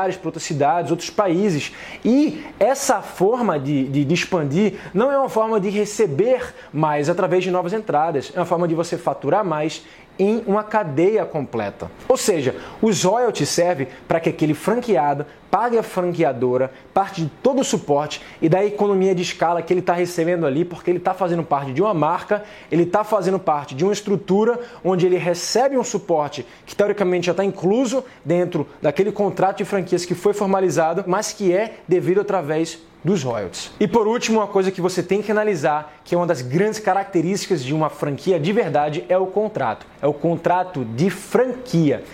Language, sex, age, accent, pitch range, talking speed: Portuguese, male, 20-39, Brazilian, 150-200 Hz, 185 wpm